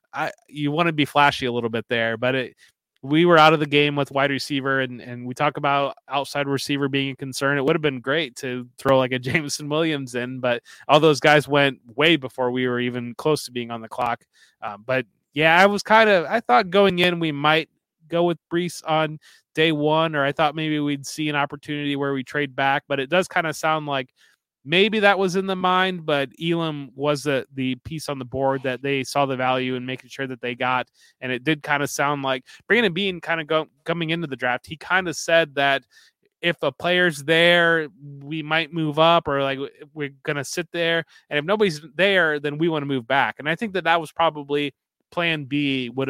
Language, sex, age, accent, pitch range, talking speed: English, male, 20-39, American, 130-160 Hz, 230 wpm